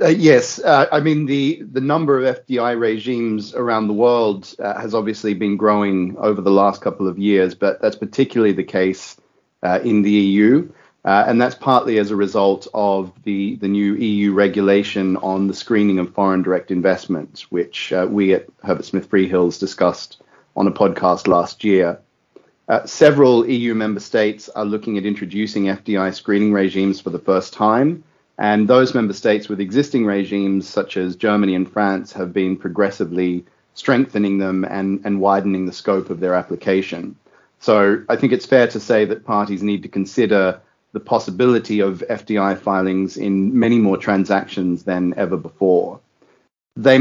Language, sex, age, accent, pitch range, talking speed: English, male, 40-59, Australian, 95-110 Hz, 170 wpm